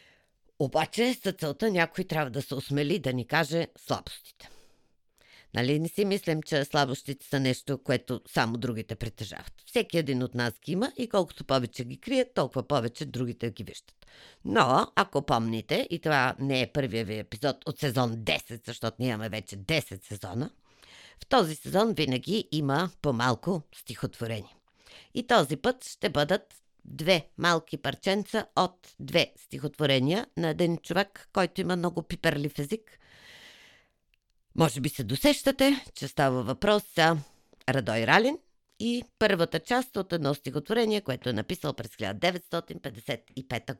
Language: Bulgarian